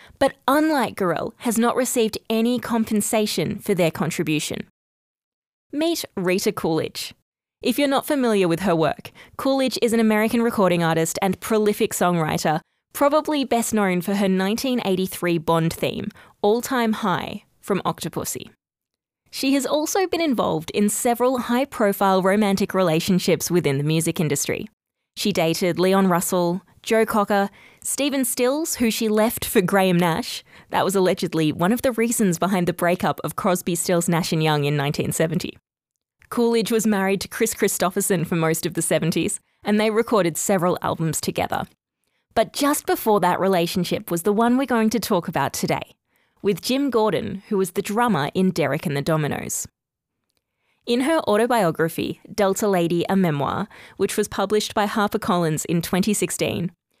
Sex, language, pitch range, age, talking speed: female, English, 175-230 Hz, 20-39, 155 wpm